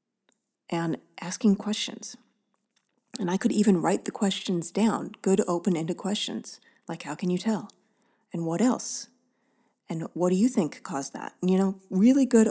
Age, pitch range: 30-49, 170-225 Hz